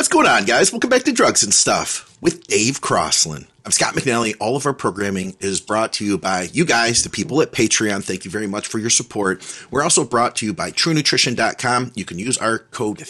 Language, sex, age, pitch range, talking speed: English, male, 40-59, 95-130 Hz, 235 wpm